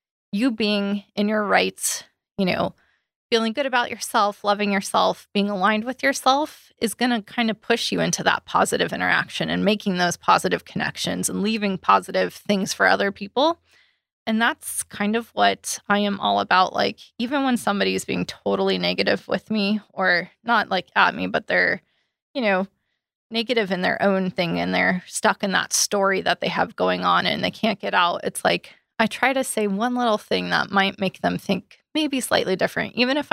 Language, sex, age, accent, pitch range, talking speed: English, female, 20-39, American, 185-230 Hz, 195 wpm